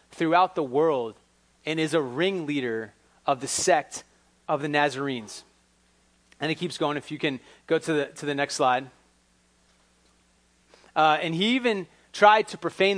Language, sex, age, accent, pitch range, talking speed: English, male, 30-49, American, 145-225 Hz, 155 wpm